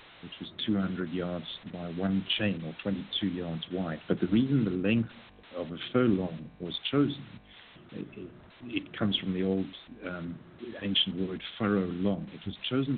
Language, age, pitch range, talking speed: English, 50-69, 90-105 Hz, 160 wpm